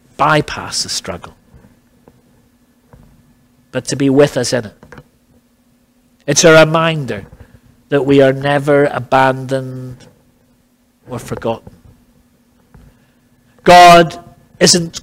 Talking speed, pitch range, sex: 90 wpm, 125-165 Hz, male